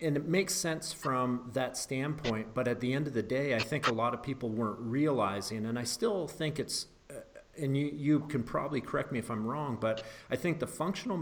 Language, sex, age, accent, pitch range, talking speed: English, male, 40-59, American, 110-135 Hz, 230 wpm